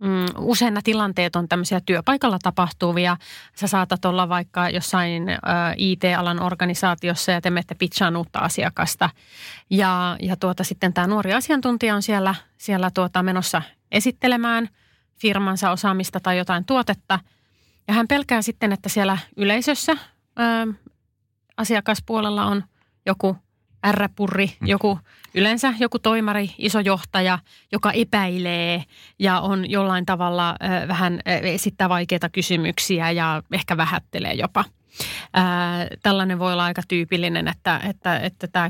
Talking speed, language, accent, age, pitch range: 125 wpm, Finnish, native, 30-49, 175-205 Hz